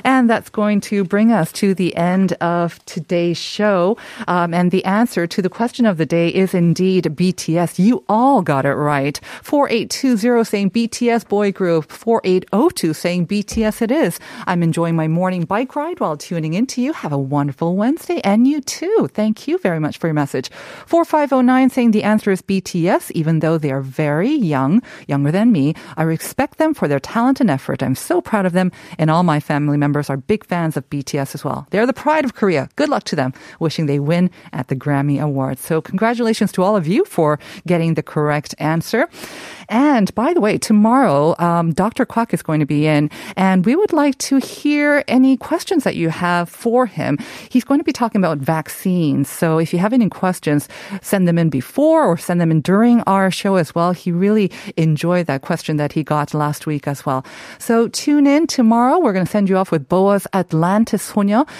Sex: female